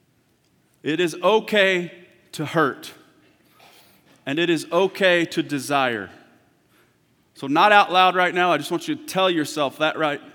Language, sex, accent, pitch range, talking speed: English, male, American, 135-180 Hz, 150 wpm